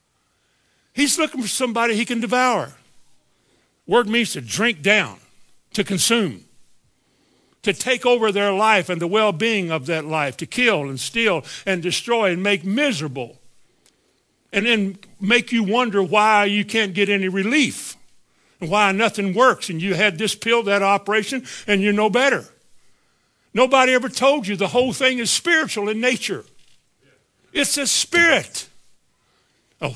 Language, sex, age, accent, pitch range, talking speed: English, male, 60-79, American, 175-230 Hz, 150 wpm